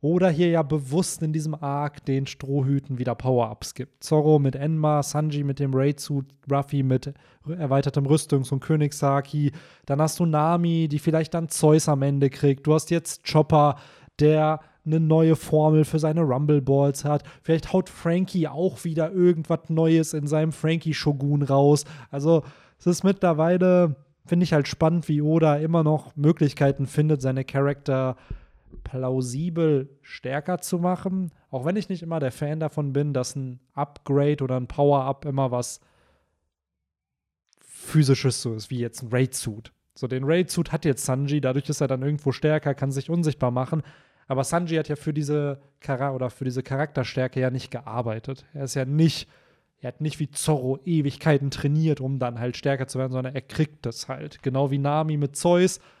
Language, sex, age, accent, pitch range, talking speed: German, male, 20-39, German, 135-155 Hz, 170 wpm